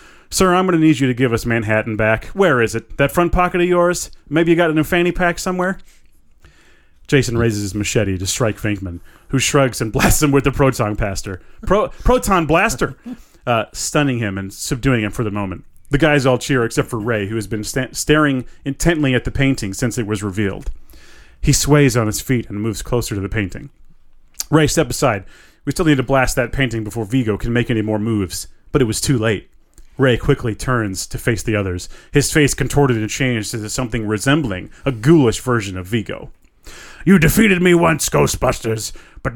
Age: 30-49